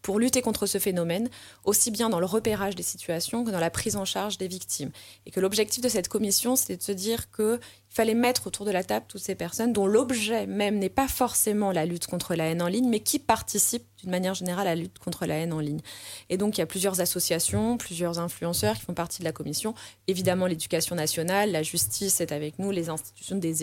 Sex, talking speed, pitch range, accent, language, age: female, 235 wpm, 175-215 Hz, French, French, 20-39